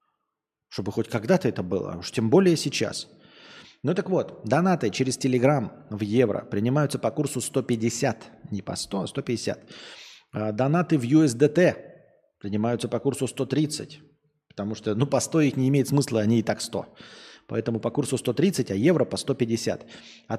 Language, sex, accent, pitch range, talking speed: Russian, male, native, 110-145 Hz, 160 wpm